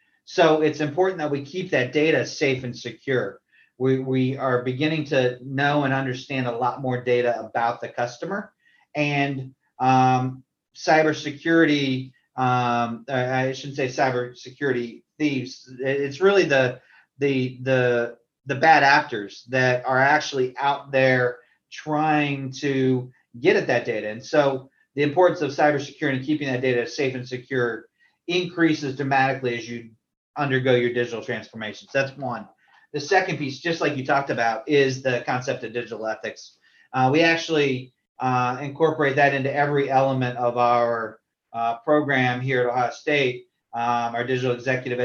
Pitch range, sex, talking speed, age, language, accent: 125-145 Hz, male, 150 wpm, 40-59, English, American